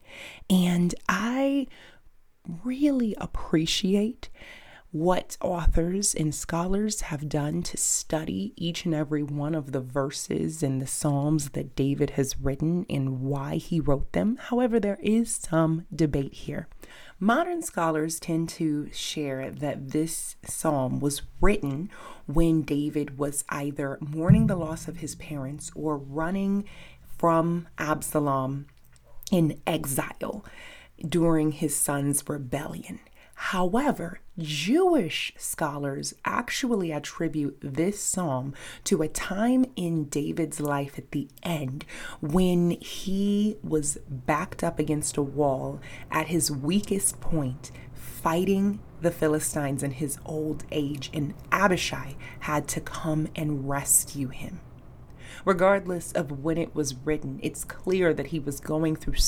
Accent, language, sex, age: American, English, female, 30-49